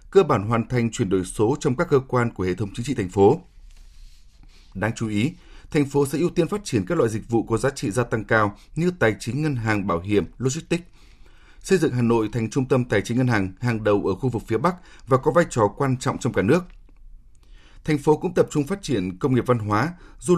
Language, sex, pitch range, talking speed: Vietnamese, male, 105-145 Hz, 250 wpm